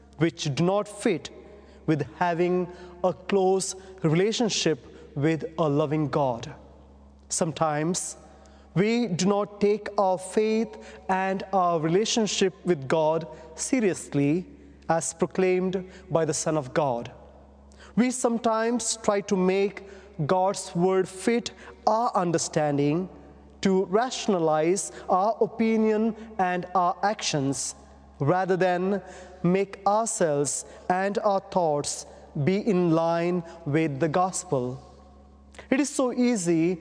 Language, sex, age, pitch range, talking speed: English, male, 30-49, 160-205 Hz, 110 wpm